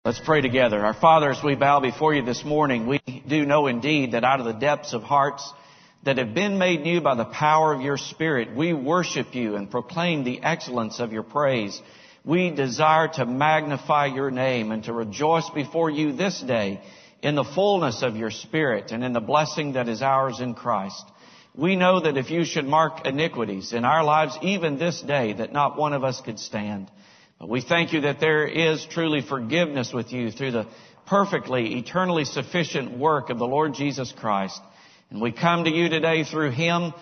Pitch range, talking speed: 125-160 Hz, 200 wpm